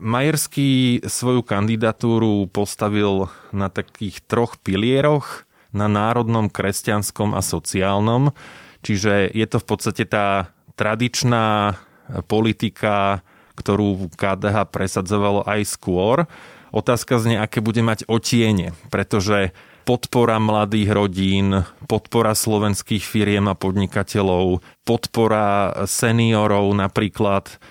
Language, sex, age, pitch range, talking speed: Slovak, male, 20-39, 100-120 Hz, 95 wpm